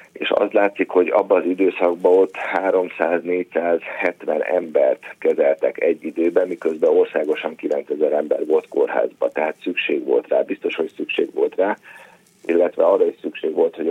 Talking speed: 145 wpm